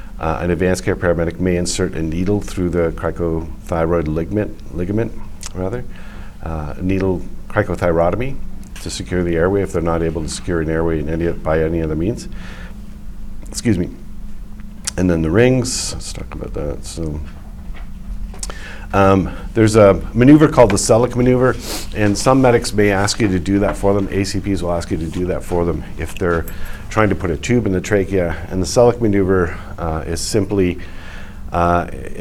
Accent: American